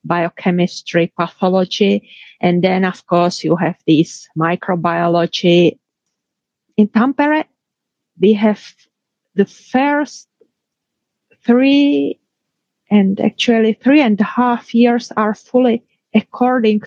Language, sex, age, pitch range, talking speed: English, female, 30-49, 180-225 Hz, 95 wpm